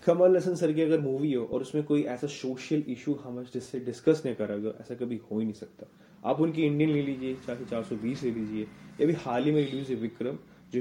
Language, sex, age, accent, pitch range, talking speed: Hindi, male, 20-39, native, 120-155 Hz, 150 wpm